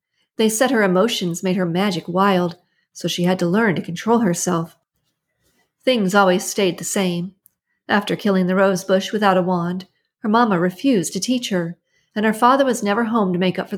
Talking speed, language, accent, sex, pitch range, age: 190 wpm, English, American, female, 180-215 Hz, 40-59